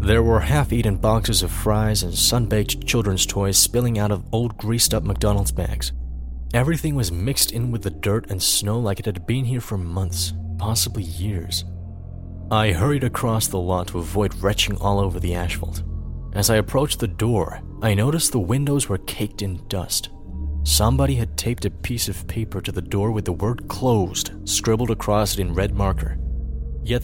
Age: 30-49